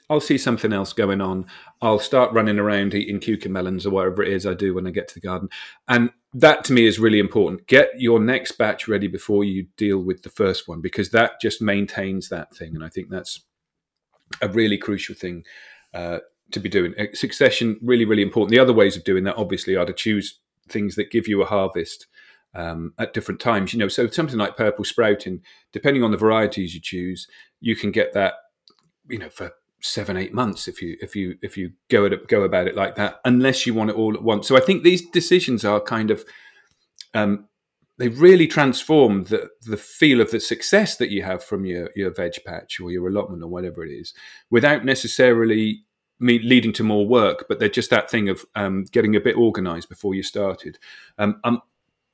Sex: male